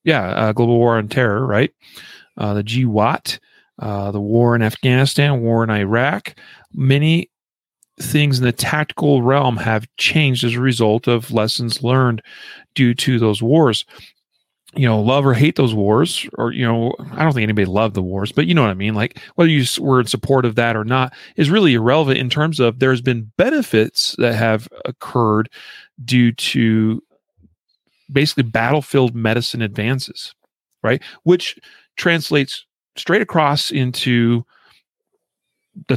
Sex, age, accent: male, 40-59, American